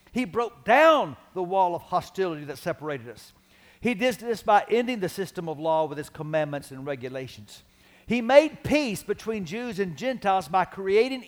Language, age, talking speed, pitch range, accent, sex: English, 50-69, 175 wpm, 175-230 Hz, American, male